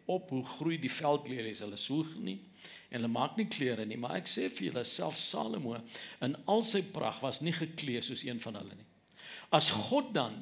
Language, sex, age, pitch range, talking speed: English, male, 50-69, 125-195 Hz, 215 wpm